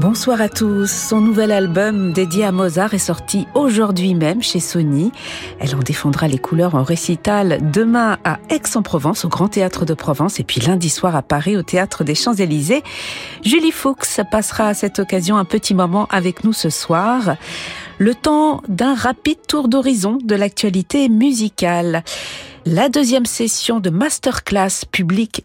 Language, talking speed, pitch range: French, 165 wpm, 155-215 Hz